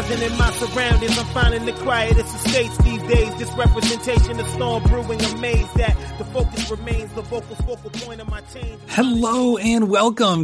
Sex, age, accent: male, 30-49, American